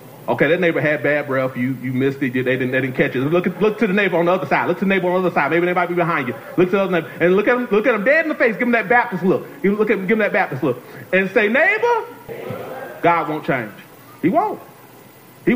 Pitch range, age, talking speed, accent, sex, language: 145-200 Hz, 40-59, 305 wpm, American, male, English